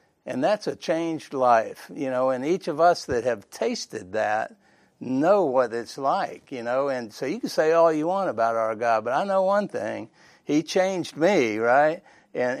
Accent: American